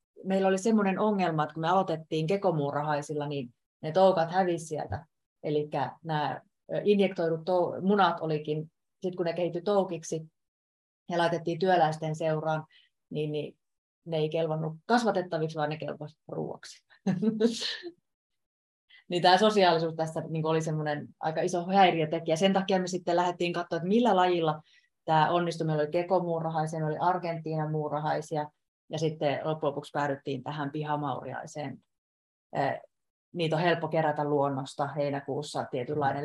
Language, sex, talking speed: Finnish, female, 125 wpm